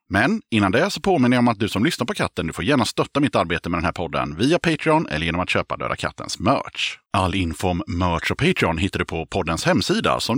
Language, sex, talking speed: Swedish, male, 255 wpm